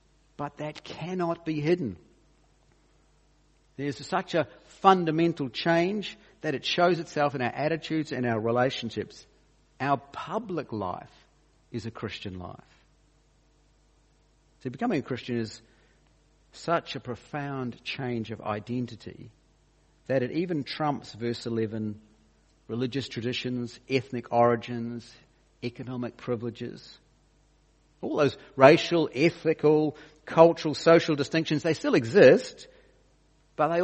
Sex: male